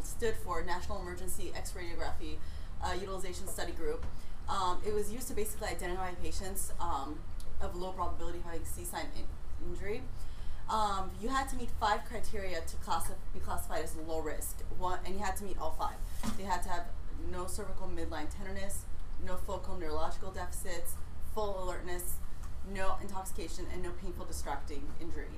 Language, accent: English, American